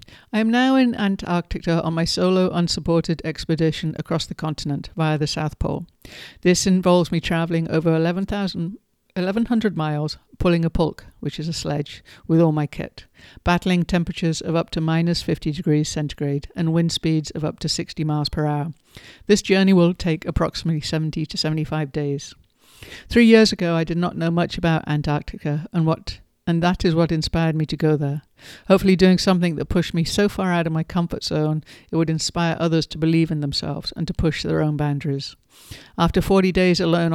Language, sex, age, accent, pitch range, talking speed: English, female, 60-79, British, 155-175 Hz, 185 wpm